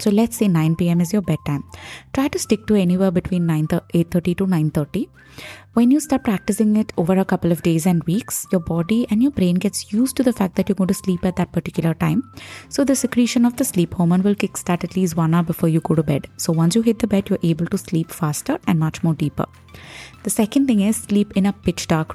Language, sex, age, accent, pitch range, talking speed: English, female, 20-39, Indian, 165-210 Hz, 240 wpm